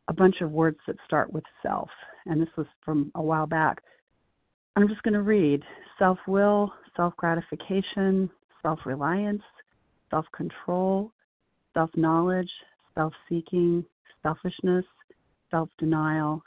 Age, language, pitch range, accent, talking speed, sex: 40-59, English, 160-190 Hz, American, 100 wpm, female